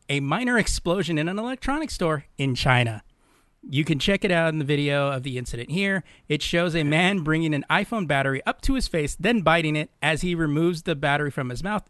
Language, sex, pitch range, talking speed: English, male, 130-170 Hz, 220 wpm